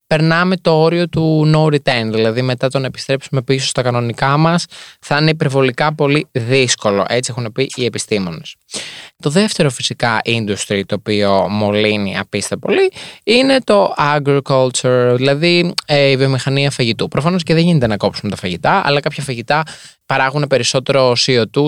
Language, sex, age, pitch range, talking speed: Greek, male, 20-39, 115-145 Hz, 150 wpm